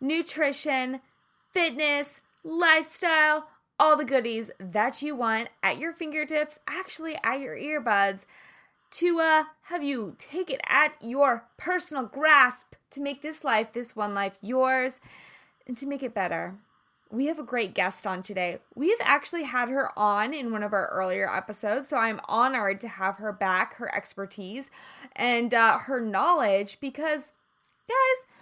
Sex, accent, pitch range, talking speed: female, American, 225-320 Hz, 150 wpm